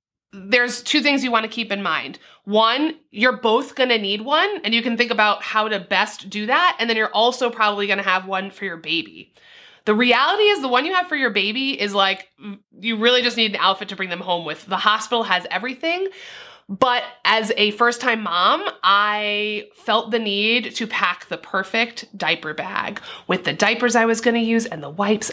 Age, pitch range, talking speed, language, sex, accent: 30-49, 195-240 Hz, 220 wpm, English, female, American